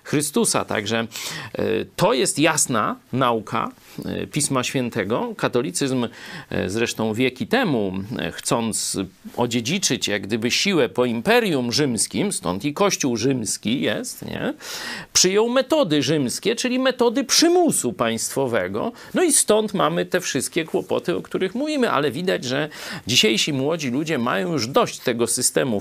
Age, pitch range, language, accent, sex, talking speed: 40-59, 120-195 Hz, Polish, native, male, 125 wpm